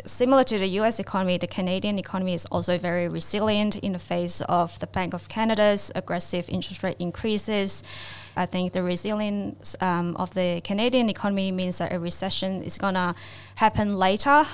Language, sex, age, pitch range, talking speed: English, female, 20-39, 180-205 Hz, 175 wpm